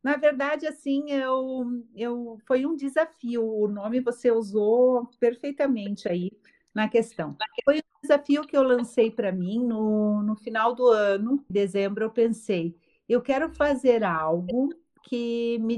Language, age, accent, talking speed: Portuguese, 50-69, Brazilian, 150 wpm